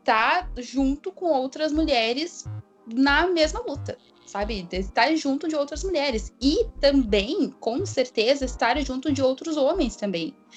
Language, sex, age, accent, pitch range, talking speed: Portuguese, female, 10-29, Brazilian, 215-285 Hz, 135 wpm